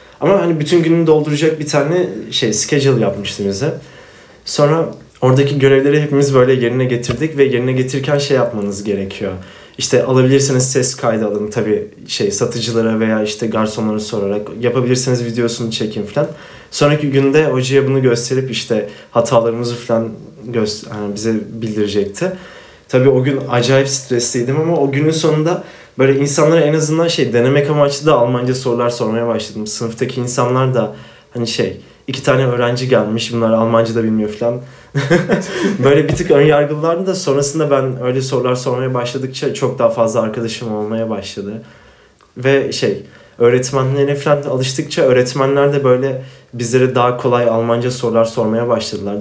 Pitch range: 115-140 Hz